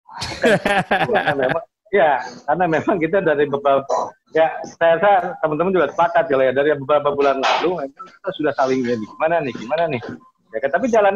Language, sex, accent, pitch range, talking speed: Indonesian, male, native, 120-180 Hz, 165 wpm